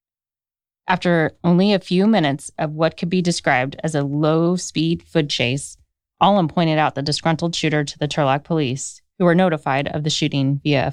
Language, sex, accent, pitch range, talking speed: English, female, American, 145-175 Hz, 180 wpm